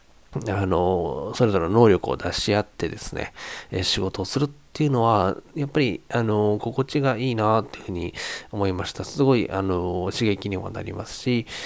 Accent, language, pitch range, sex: native, Japanese, 95-145 Hz, male